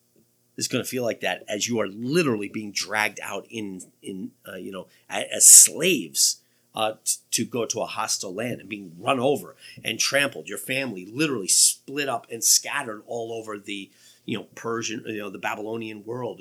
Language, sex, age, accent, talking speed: English, male, 40-59, American, 190 wpm